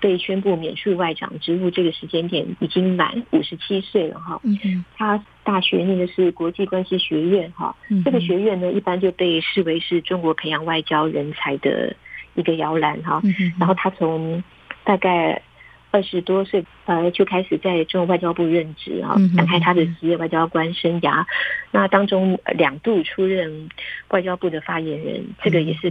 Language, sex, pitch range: Chinese, female, 165-195 Hz